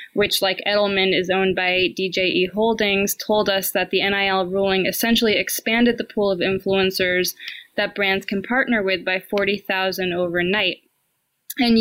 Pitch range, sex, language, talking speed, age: 190-215 Hz, female, English, 145 wpm, 20-39